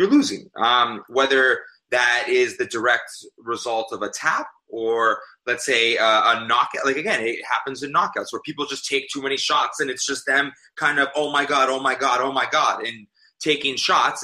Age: 20-39